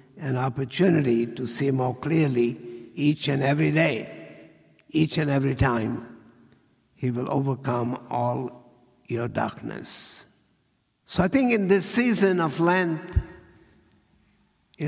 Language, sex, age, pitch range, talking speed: English, male, 60-79, 125-155 Hz, 115 wpm